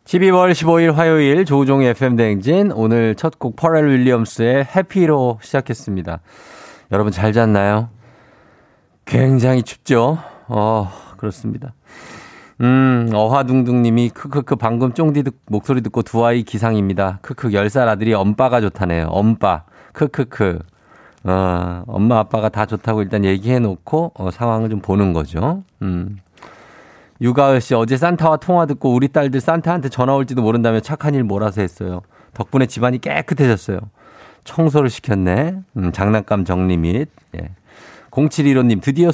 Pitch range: 105-140 Hz